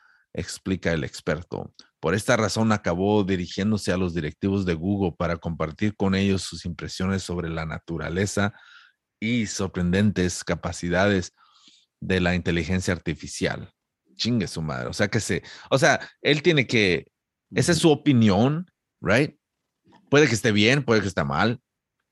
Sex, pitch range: male, 90-115 Hz